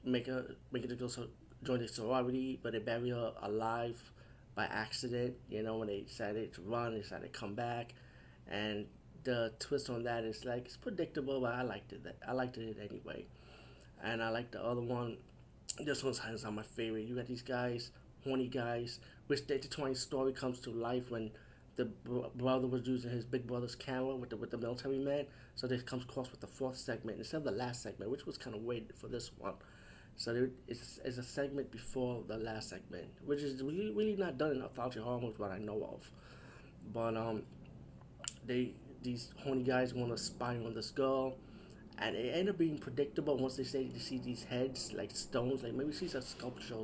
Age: 30-49